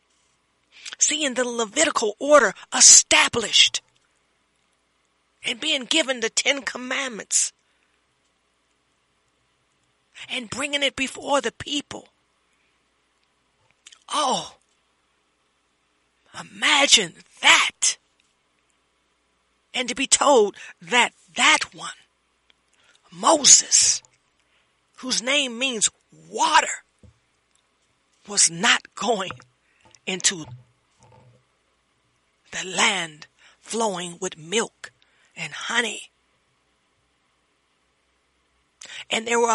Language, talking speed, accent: English, 70 wpm, American